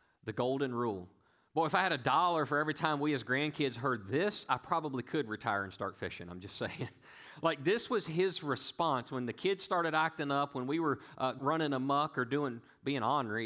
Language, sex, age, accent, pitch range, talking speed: English, male, 40-59, American, 110-150 Hz, 215 wpm